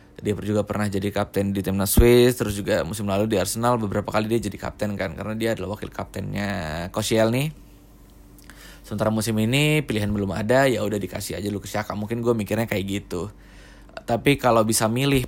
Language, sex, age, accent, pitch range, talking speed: Indonesian, male, 20-39, native, 100-115 Hz, 190 wpm